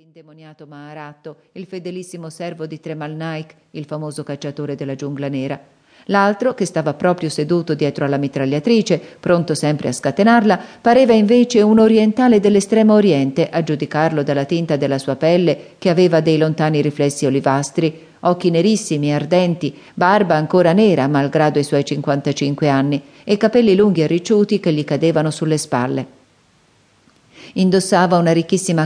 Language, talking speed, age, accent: Italian, 145 wpm, 40-59, native